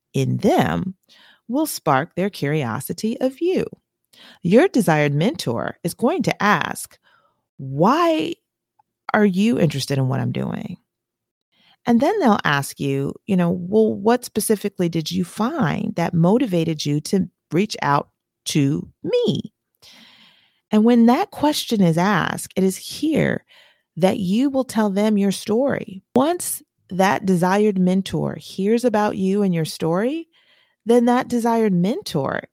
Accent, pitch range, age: American, 170-230 Hz, 40-59